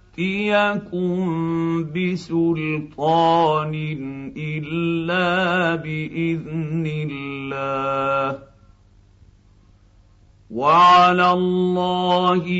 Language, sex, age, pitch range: Arabic, male, 50-69, 135-170 Hz